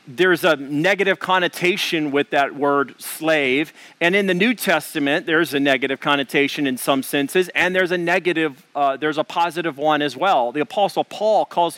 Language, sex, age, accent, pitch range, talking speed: English, male, 40-59, American, 145-185 Hz, 180 wpm